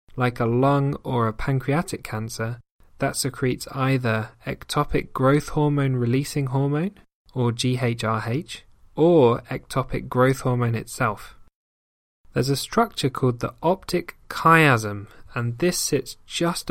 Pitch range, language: 115-145 Hz, English